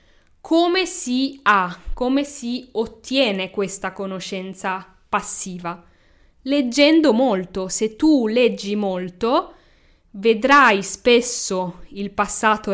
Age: 20-39